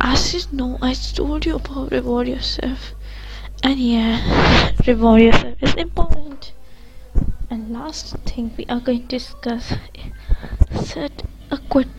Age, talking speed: 20-39, 140 wpm